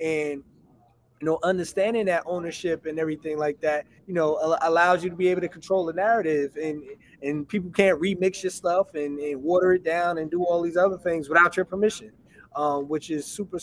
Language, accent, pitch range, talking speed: English, American, 150-180 Hz, 205 wpm